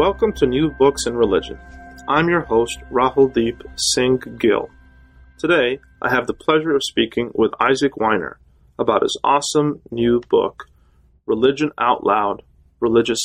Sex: male